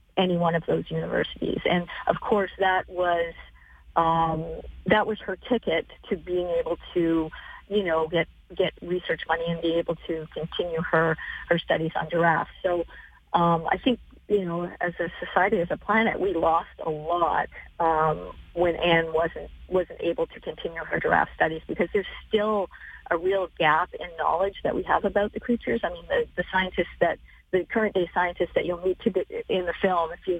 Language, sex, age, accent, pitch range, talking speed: English, female, 40-59, American, 170-200 Hz, 180 wpm